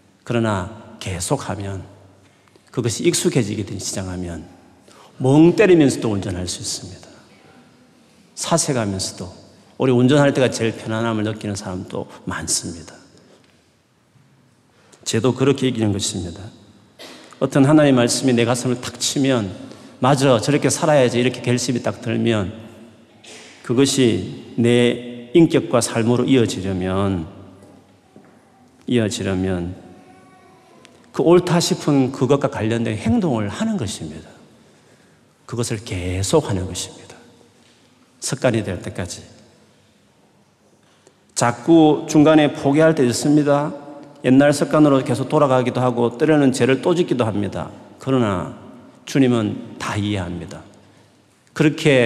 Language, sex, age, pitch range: Korean, male, 40-59, 100-135 Hz